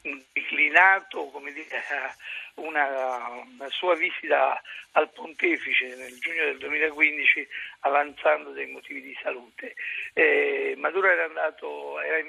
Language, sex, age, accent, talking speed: Italian, male, 50-69, native, 105 wpm